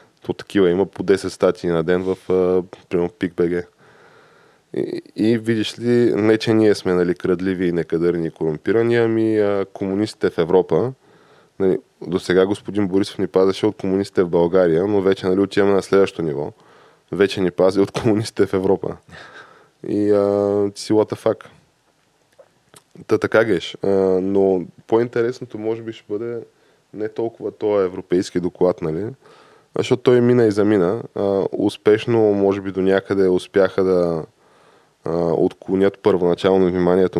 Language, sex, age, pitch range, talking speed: Bulgarian, male, 20-39, 90-110 Hz, 140 wpm